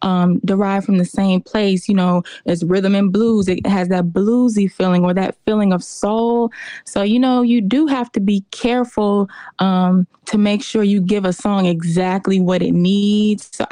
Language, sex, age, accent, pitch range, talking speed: English, female, 20-39, American, 185-220 Hz, 190 wpm